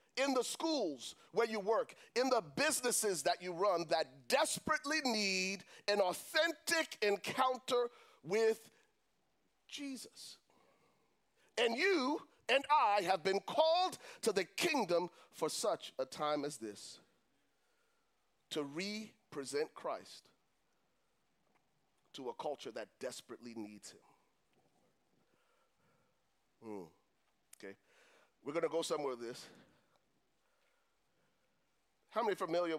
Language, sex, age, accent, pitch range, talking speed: English, male, 40-59, American, 150-230 Hz, 110 wpm